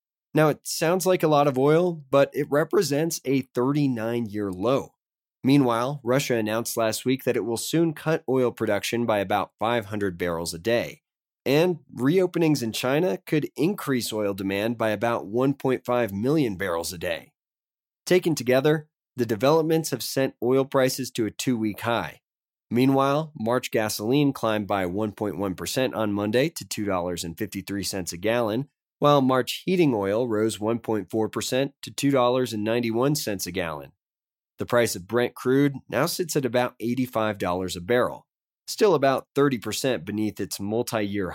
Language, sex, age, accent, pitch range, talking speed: English, male, 30-49, American, 105-135 Hz, 145 wpm